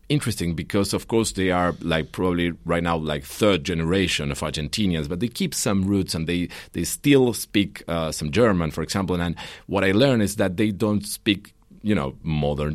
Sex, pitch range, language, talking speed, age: male, 80-105 Hz, German, 200 wpm, 40-59